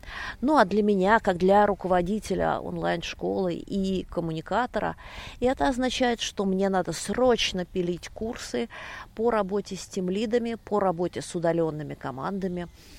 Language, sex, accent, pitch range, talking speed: Russian, female, native, 165-220 Hz, 135 wpm